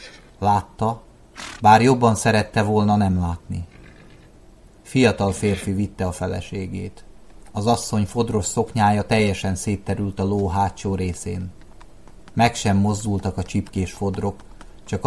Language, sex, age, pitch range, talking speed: Hungarian, male, 30-49, 95-110 Hz, 115 wpm